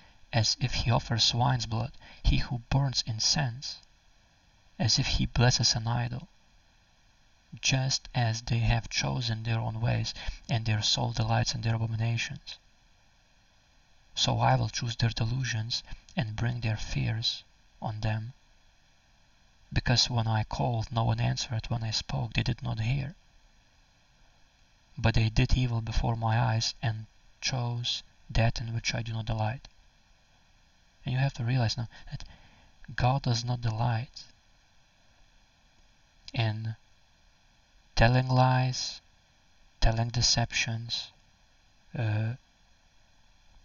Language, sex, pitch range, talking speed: English, male, 110-125 Hz, 125 wpm